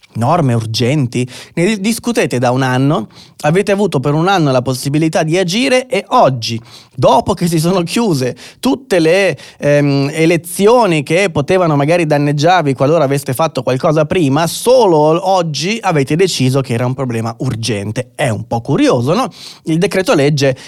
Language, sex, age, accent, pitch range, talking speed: Italian, male, 30-49, native, 130-165 Hz, 155 wpm